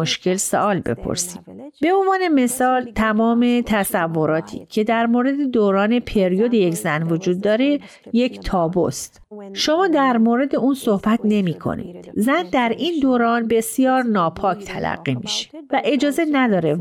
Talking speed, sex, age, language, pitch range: 130 wpm, female, 40-59, Persian, 185-240 Hz